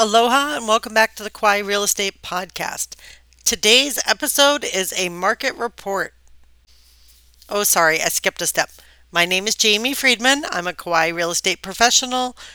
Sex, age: female, 40-59